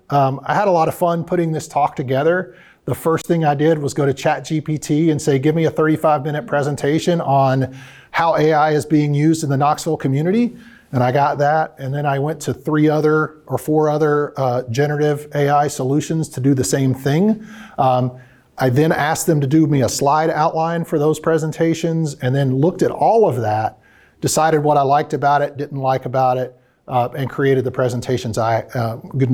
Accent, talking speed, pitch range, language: American, 205 wpm, 130-160 Hz, English